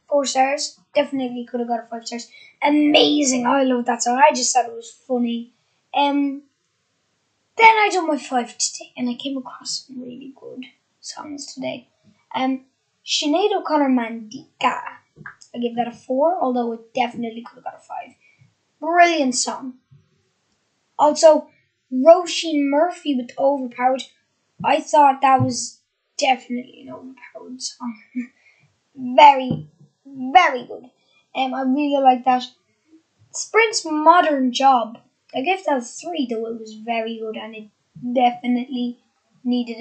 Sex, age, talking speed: female, 10-29, 140 wpm